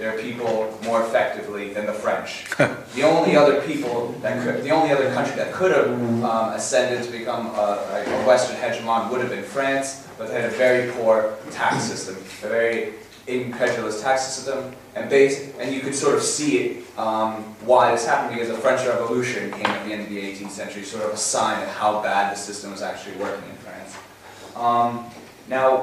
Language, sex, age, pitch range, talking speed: English, male, 20-39, 115-140 Hz, 200 wpm